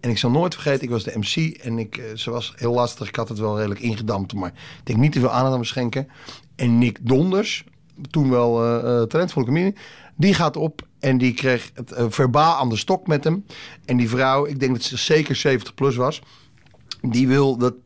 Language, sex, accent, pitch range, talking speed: Dutch, male, Dutch, 120-160 Hz, 230 wpm